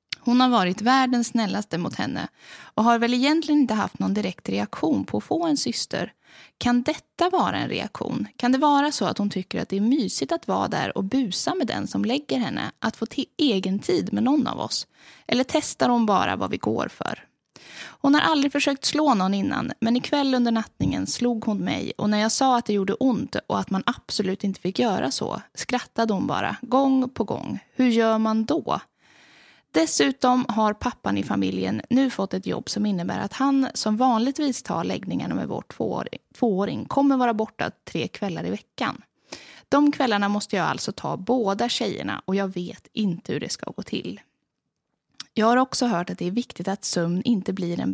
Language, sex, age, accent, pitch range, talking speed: English, female, 20-39, Swedish, 195-265 Hz, 205 wpm